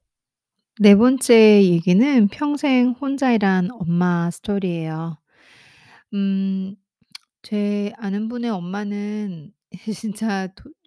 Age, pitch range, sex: 30-49, 190-275 Hz, female